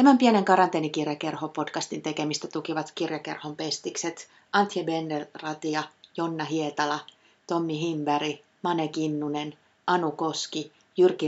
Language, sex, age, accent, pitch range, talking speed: Finnish, female, 30-49, native, 155-180 Hz, 95 wpm